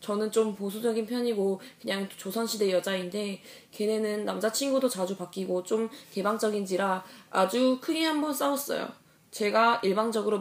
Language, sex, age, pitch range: Korean, female, 20-39, 190-245 Hz